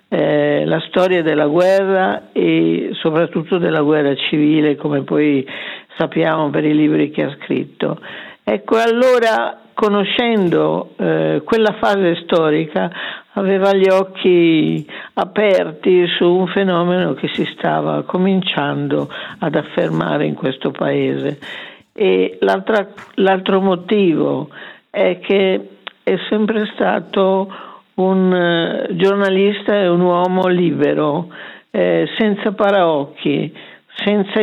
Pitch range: 160-205 Hz